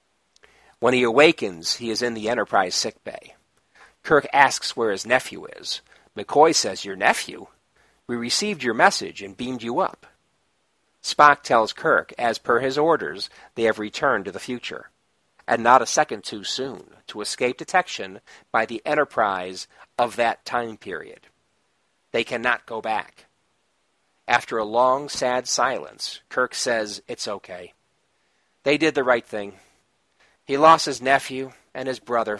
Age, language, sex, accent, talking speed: 50-69, English, male, American, 150 wpm